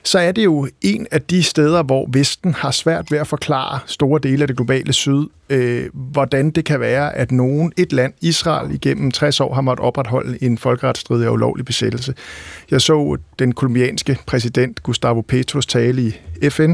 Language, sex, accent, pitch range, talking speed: Danish, male, native, 120-150 Hz, 185 wpm